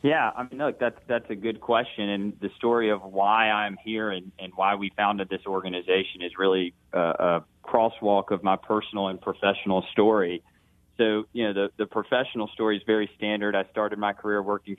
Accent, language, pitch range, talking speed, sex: American, English, 95-105 Hz, 200 wpm, male